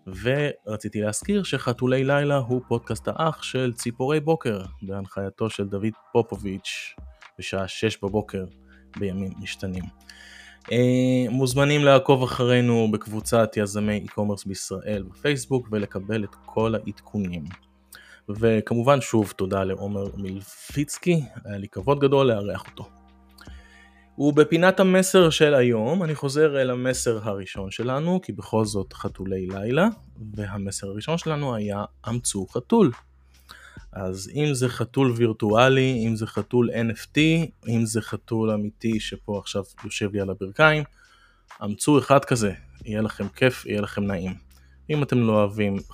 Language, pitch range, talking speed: Hebrew, 100-130 Hz, 125 wpm